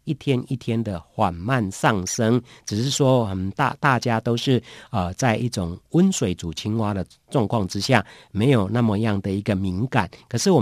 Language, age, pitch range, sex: Chinese, 50-69, 105-145 Hz, male